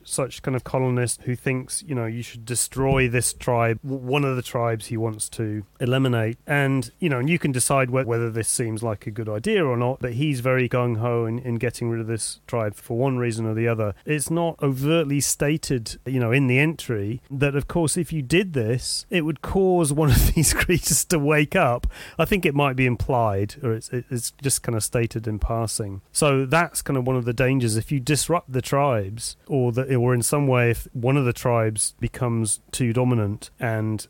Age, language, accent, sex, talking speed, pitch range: 30-49, English, British, male, 220 wpm, 115-140 Hz